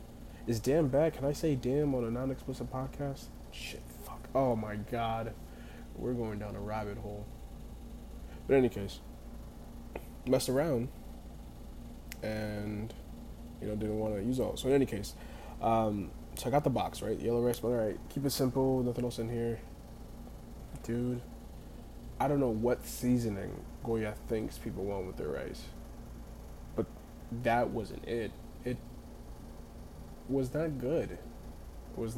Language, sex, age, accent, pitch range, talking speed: English, male, 20-39, American, 80-130 Hz, 155 wpm